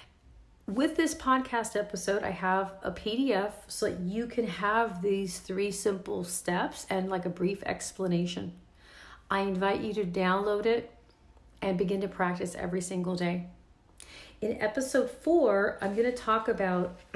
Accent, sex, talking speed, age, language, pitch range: American, female, 150 wpm, 40-59, English, 185-230 Hz